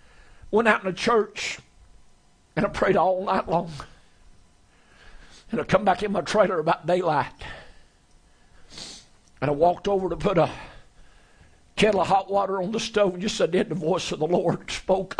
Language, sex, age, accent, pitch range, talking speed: English, male, 60-79, American, 165-215 Hz, 180 wpm